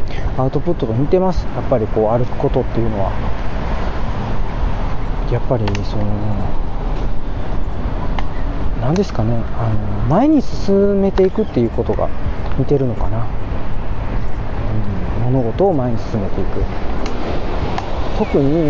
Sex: male